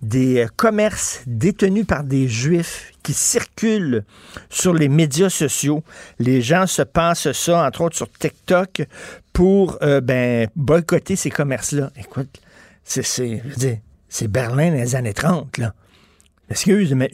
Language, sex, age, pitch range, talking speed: French, male, 50-69, 125-170 Hz, 145 wpm